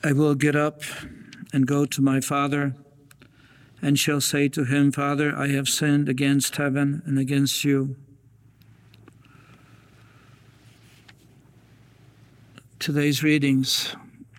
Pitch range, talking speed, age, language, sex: 140-155 Hz, 105 wpm, 60-79, English, male